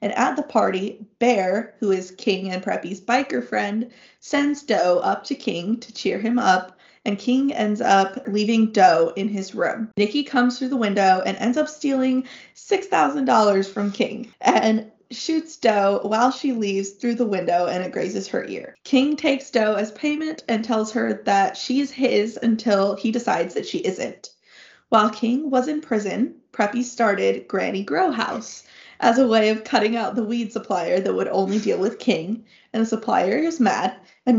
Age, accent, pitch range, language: 20-39, American, 205-250 Hz, English